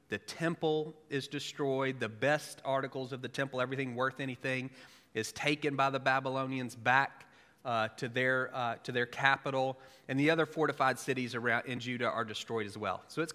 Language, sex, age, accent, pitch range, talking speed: English, male, 40-59, American, 115-150 Hz, 180 wpm